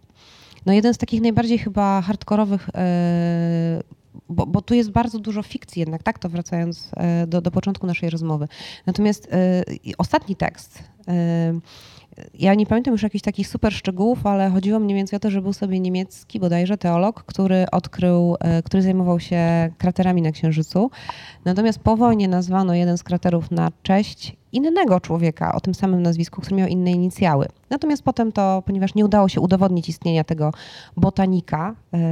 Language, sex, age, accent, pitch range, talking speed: Polish, female, 20-39, native, 170-210 Hz, 155 wpm